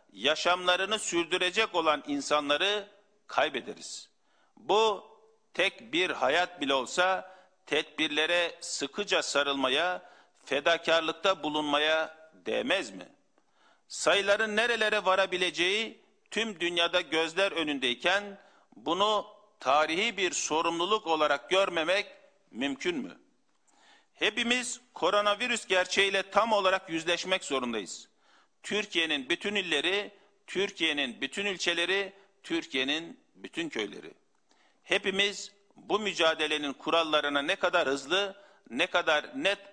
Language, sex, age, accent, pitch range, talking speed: Turkish, male, 50-69, native, 160-205 Hz, 90 wpm